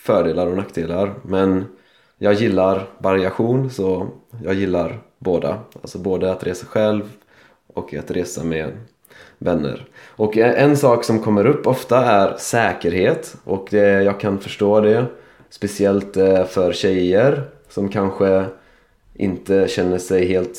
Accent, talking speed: native, 130 wpm